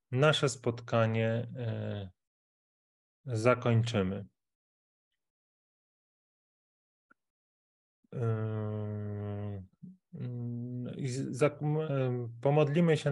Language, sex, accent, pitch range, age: Polish, male, native, 105-125 Hz, 30-49